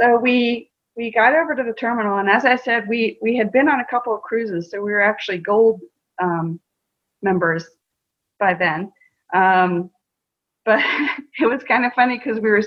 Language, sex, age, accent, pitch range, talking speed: English, female, 40-59, American, 180-225 Hz, 190 wpm